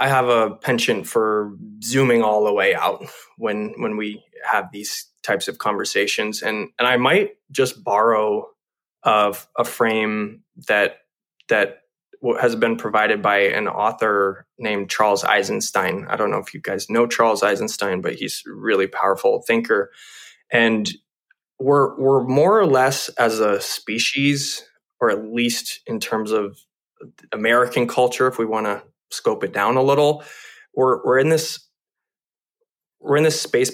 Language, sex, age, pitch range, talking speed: English, male, 20-39, 115-170 Hz, 155 wpm